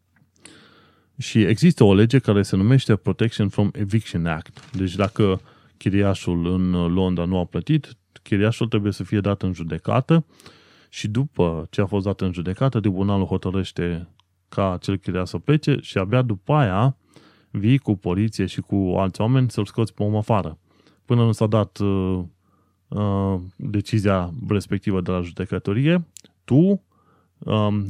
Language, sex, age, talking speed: Romanian, male, 20-39, 150 wpm